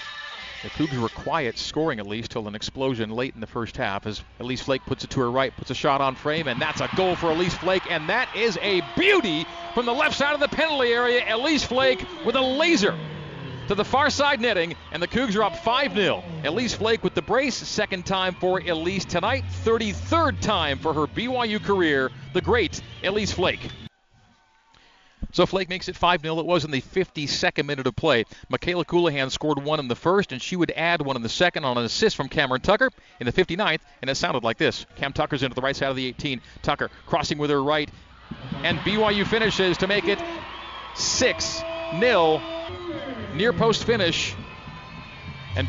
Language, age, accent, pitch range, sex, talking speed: English, 40-59, American, 130-205 Hz, male, 195 wpm